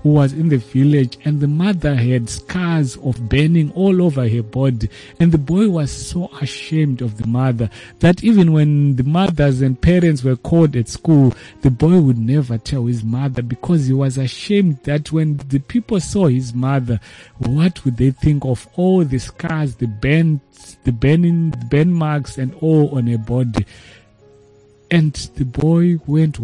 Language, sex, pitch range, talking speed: English, male, 125-165 Hz, 175 wpm